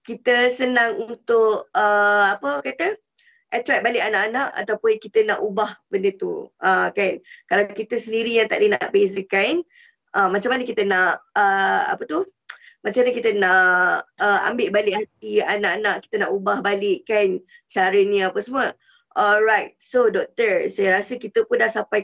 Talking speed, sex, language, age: 165 wpm, female, Malay, 20-39